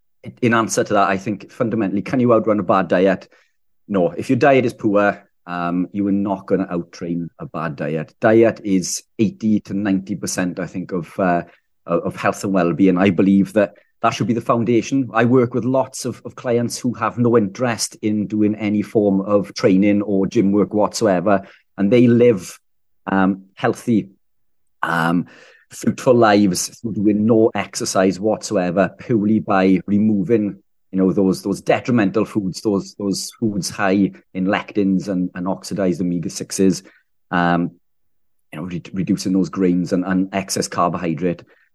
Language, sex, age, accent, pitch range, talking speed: English, male, 40-59, British, 95-110 Hz, 160 wpm